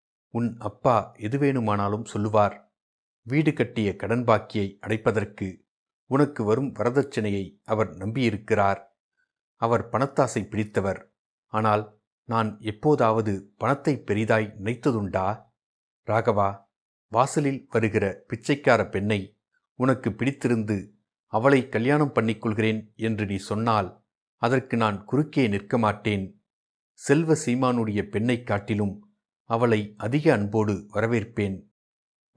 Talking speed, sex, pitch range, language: 95 wpm, male, 105-125 Hz, Tamil